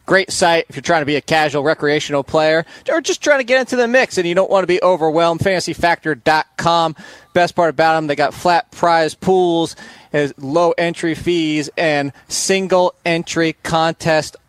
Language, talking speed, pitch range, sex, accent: English, 180 wpm, 135-180 Hz, male, American